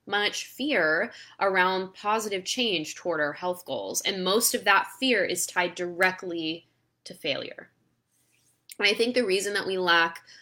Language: English